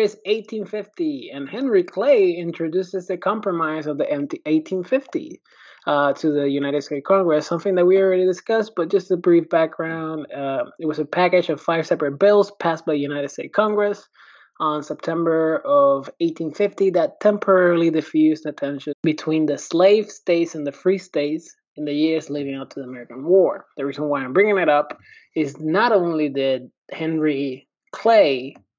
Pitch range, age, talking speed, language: 150-205 Hz, 20-39, 170 wpm, English